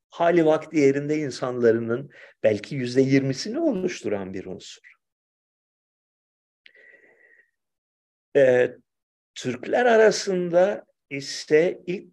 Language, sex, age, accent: Turkish, male, 50-69, native